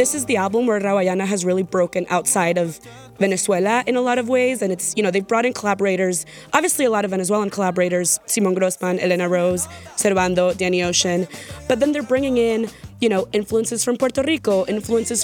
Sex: female